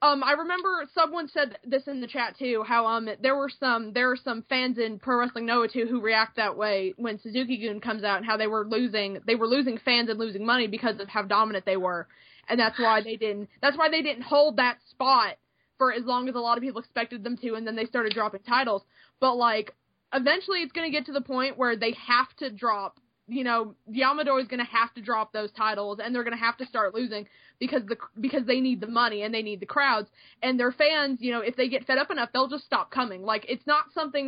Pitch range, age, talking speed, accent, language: 220-260 Hz, 20-39, 250 wpm, American, English